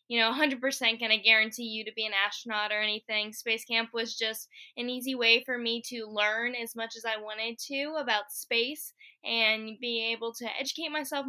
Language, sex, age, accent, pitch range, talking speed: English, female, 10-29, American, 225-265 Hz, 200 wpm